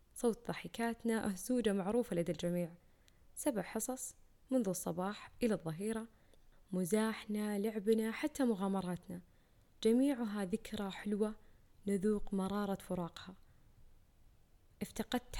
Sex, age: female, 10-29